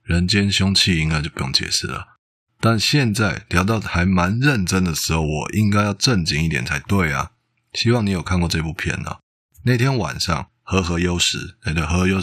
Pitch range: 80-115 Hz